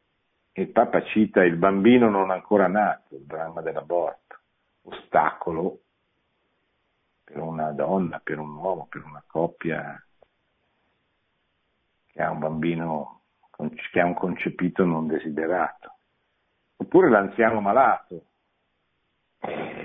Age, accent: 50-69, native